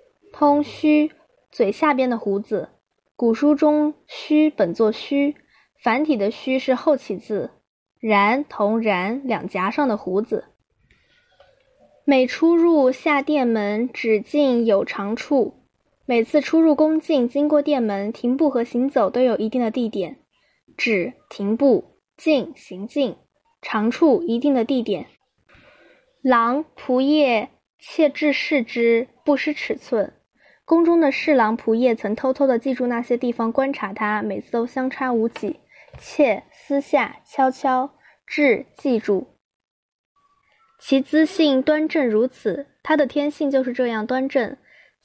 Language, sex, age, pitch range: Chinese, female, 10-29, 230-295 Hz